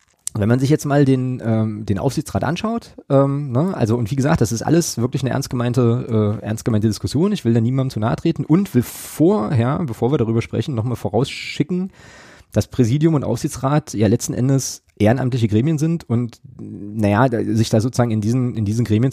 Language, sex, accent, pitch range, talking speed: German, male, German, 110-140 Hz, 200 wpm